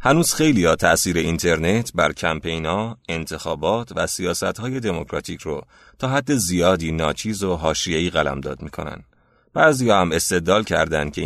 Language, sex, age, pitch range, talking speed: Persian, male, 30-49, 85-115 Hz, 130 wpm